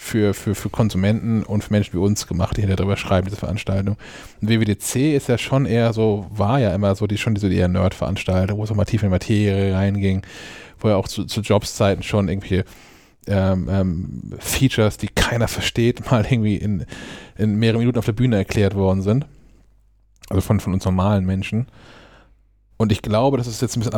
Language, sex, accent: German, male, German